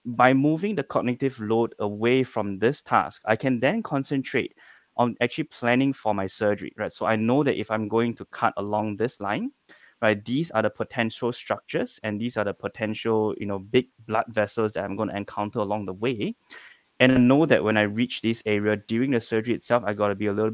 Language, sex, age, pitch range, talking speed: English, male, 20-39, 105-125 Hz, 220 wpm